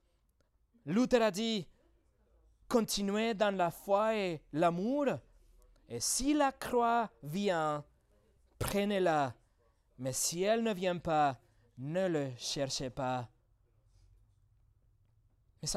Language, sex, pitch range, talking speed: French, male, 165-230 Hz, 100 wpm